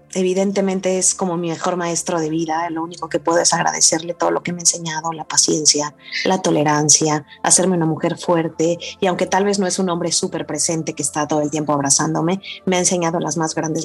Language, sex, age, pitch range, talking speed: Spanish, female, 30-49, 175-235 Hz, 215 wpm